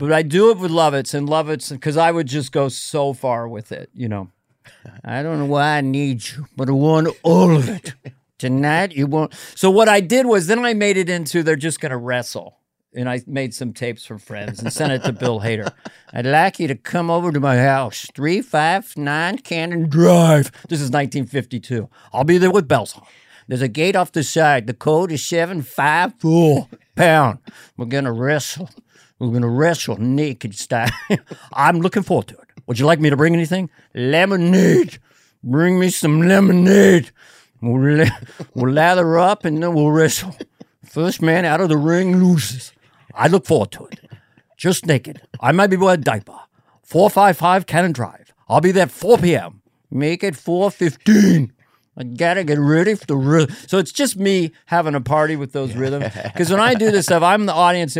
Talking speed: 200 wpm